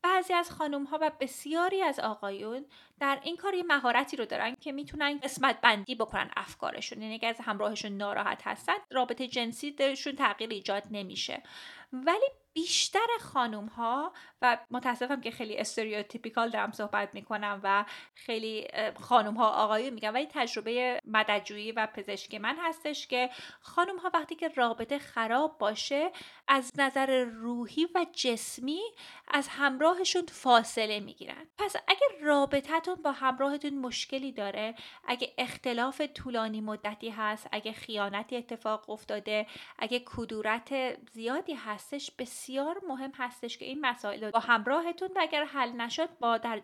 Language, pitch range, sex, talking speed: Persian, 220-295 Hz, female, 140 wpm